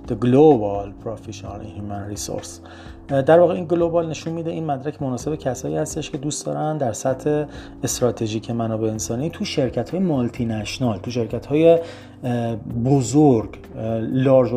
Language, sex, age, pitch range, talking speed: Persian, male, 30-49, 110-140 Hz, 140 wpm